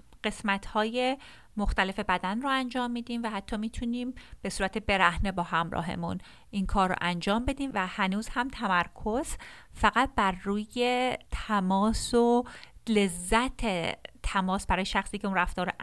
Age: 30-49